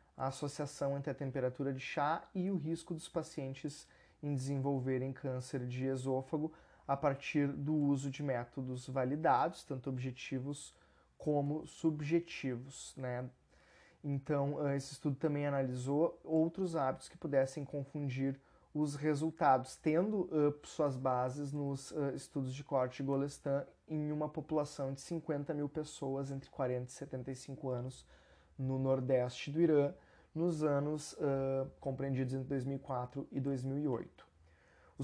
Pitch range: 135-155 Hz